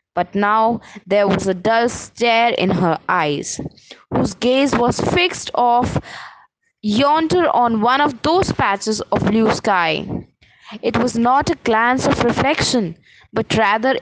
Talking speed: 140 wpm